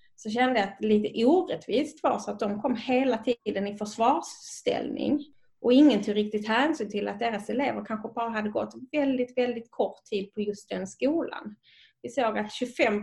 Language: Swedish